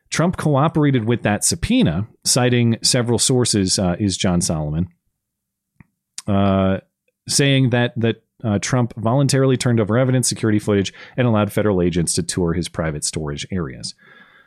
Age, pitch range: 40-59, 100-130 Hz